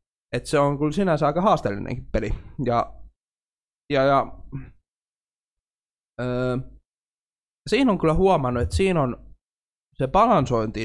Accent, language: native, Finnish